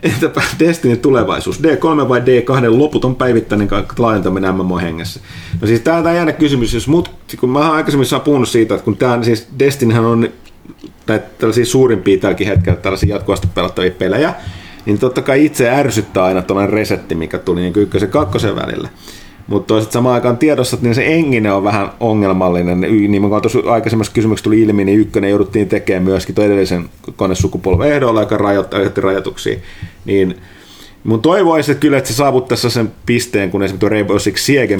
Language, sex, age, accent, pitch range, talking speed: Finnish, male, 30-49, native, 95-125 Hz, 165 wpm